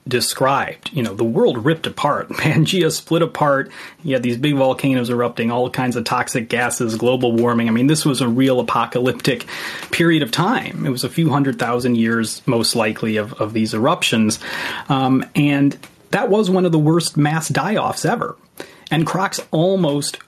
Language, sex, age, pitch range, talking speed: English, male, 30-49, 125-165 Hz, 180 wpm